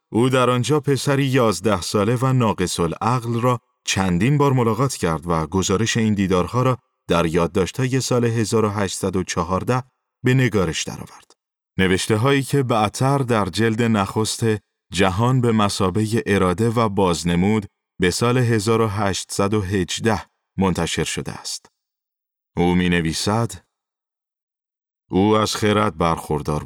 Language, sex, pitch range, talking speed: Persian, male, 90-120 Hz, 115 wpm